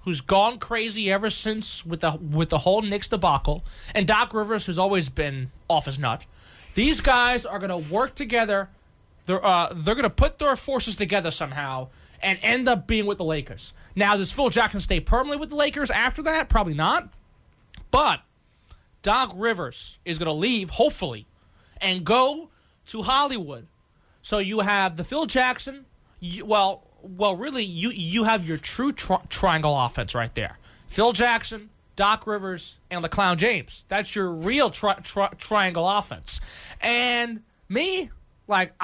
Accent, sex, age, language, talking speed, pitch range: American, male, 20-39, English, 165 wpm, 175-235 Hz